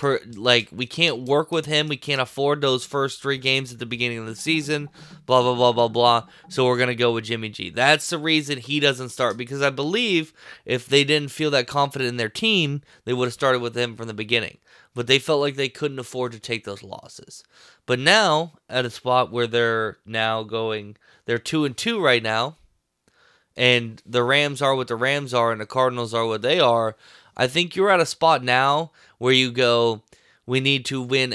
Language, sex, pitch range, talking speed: English, male, 120-150 Hz, 220 wpm